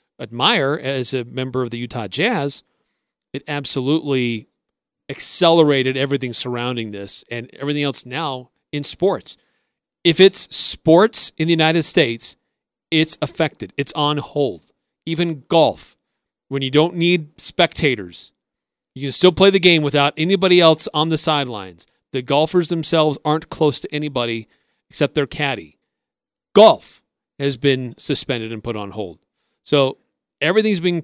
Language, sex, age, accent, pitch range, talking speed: English, male, 40-59, American, 125-160 Hz, 140 wpm